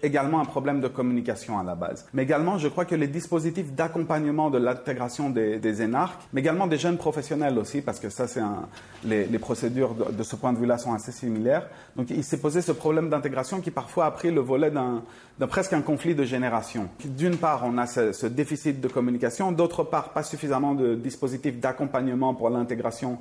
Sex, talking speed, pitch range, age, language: male, 215 wpm, 125-160 Hz, 40-59, French